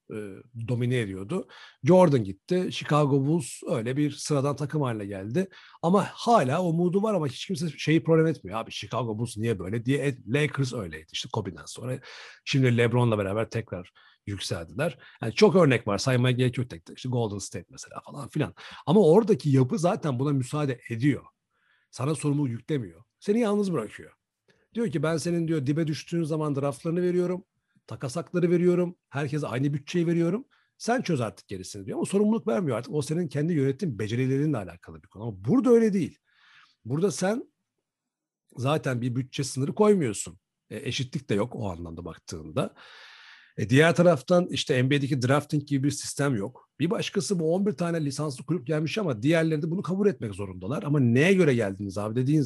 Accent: native